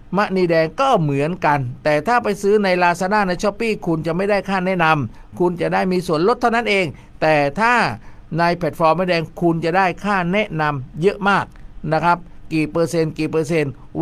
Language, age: Thai, 50-69